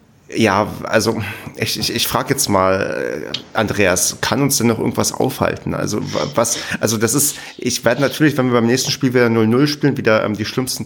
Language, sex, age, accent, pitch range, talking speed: German, male, 30-49, German, 105-125 Hz, 195 wpm